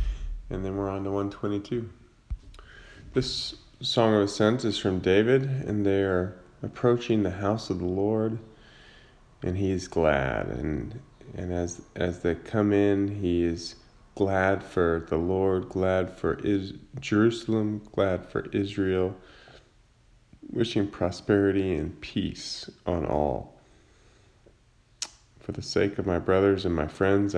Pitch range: 90-110 Hz